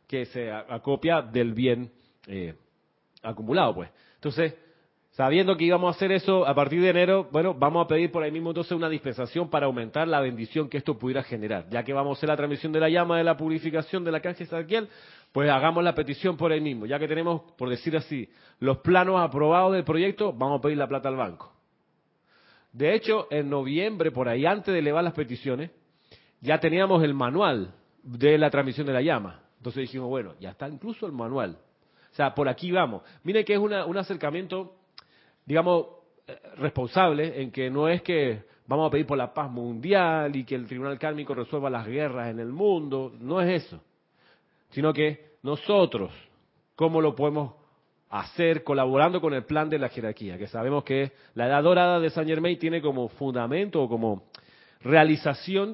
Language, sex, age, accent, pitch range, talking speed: Spanish, male, 40-59, Argentinian, 135-170 Hz, 190 wpm